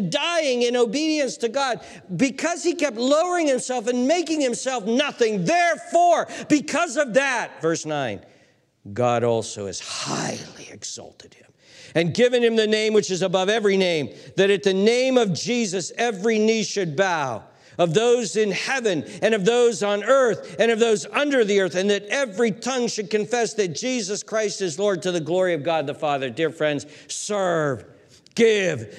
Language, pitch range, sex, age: English, 145-235 Hz, male, 50-69